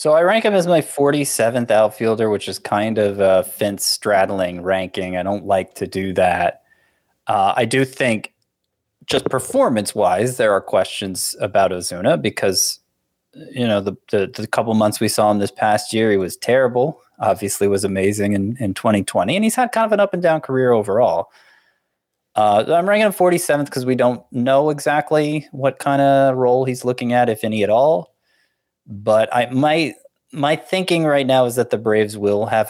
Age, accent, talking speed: 20-39, American, 195 wpm